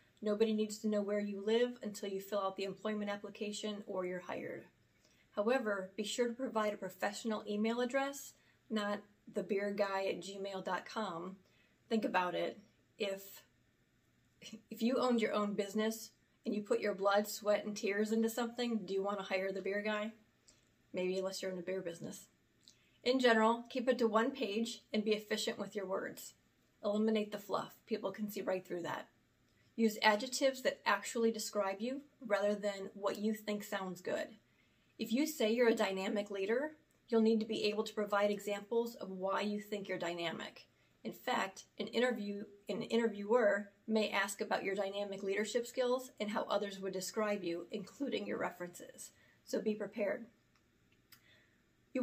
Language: English